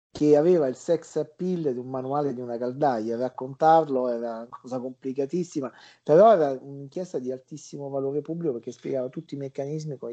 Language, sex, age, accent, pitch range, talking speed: Italian, male, 40-59, native, 115-135 Hz, 170 wpm